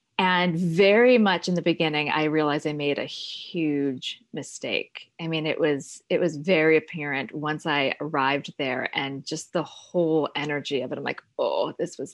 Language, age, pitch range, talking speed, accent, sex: English, 30-49, 155-205 Hz, 185 wpm, American, female